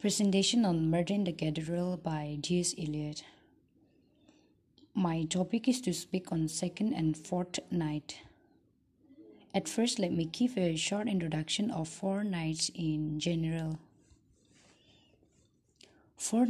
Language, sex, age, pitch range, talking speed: English, female, 20-39, 160-200 Hz, 115 wpm